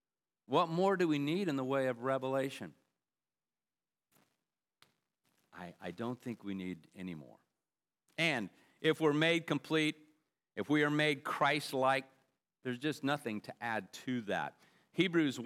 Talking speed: 140 wpm